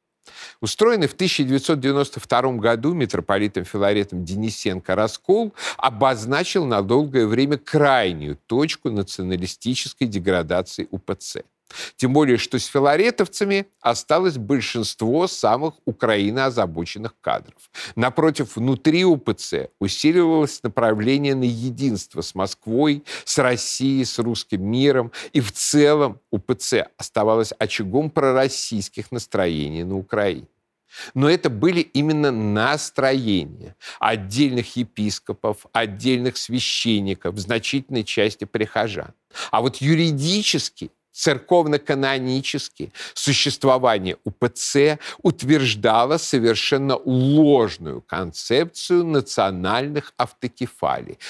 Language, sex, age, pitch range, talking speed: Russian, male, 50-69, 105-145 Hz, 90 wpm